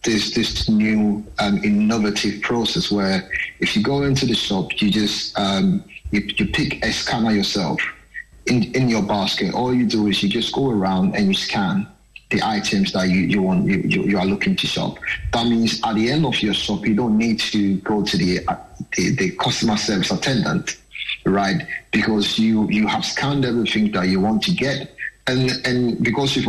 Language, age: English, 30-49